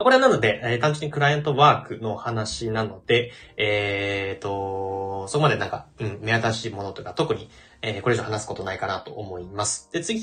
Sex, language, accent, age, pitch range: male, Japanese, native, 20-39, 110-155 Hz